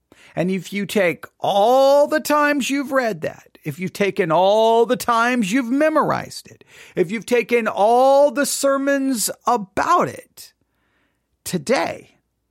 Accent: American